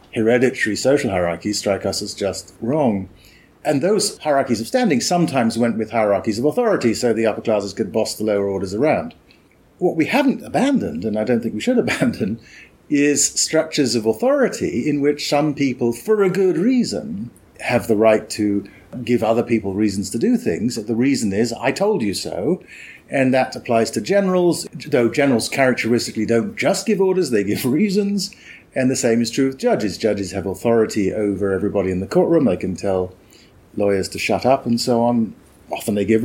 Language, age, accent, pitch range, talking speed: English, 50-69, British, 110-175 Hz, 185 wpm